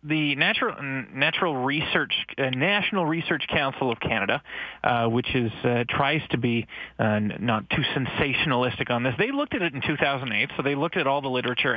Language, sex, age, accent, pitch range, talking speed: English, male, 30-49, American, 125-180 Hz, 180 wpm